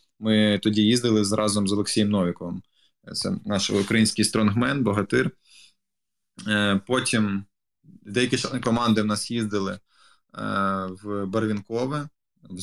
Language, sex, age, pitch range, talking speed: Ukrainian, male, 20-39, 105-125 Hz, 105 wpm